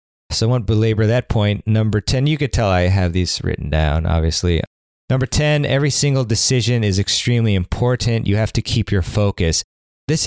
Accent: American